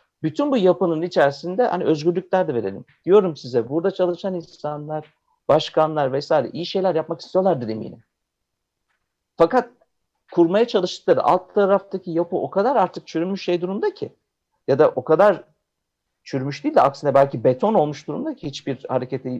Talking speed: 150 wpm